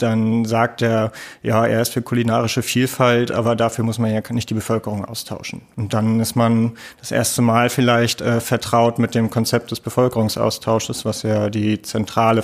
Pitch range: 110-120 Hz